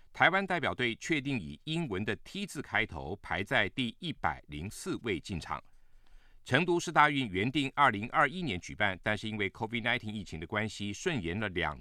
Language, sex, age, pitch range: Japanese, male, 50-69, 105-155 Hz